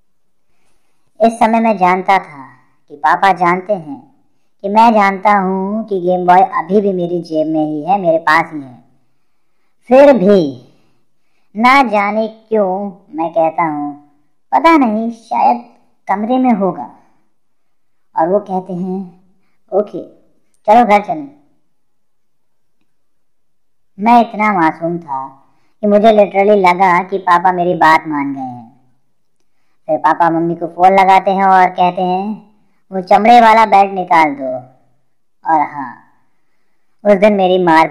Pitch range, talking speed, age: 160-210 Hz, 140 wpm, 50-69